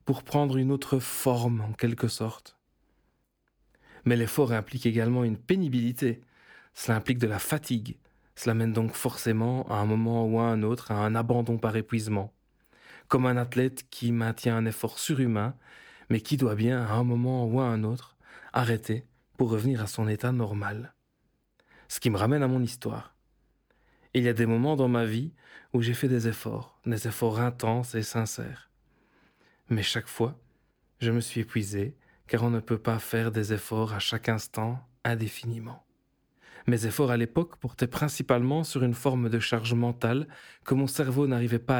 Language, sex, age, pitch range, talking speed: French, male, 40-59, 115-130 Hz, 175 wpm